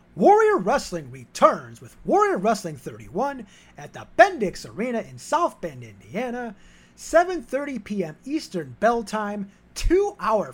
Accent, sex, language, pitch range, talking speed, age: American, male, English, 150-235 Hz, 120 wpm, 30-49